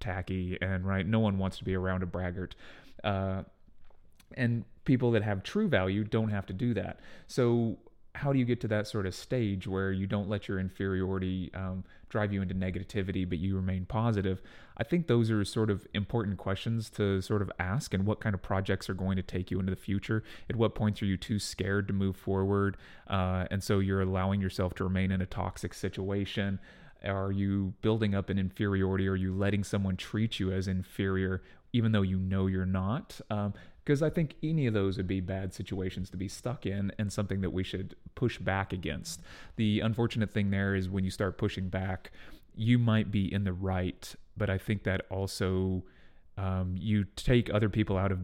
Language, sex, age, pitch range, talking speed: English, male, 30-49, 95-105 Hz, 205 wpm